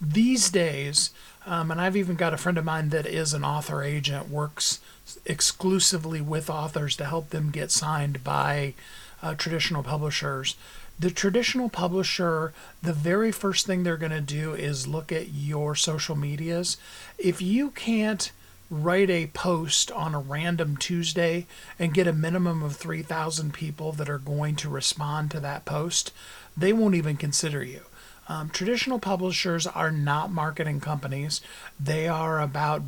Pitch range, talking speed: 145-170 Hz, 155 wpm